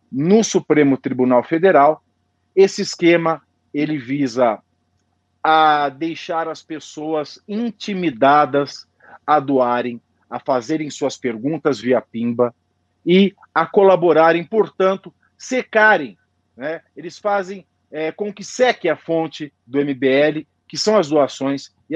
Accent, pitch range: Brazilian, 120-165 Hz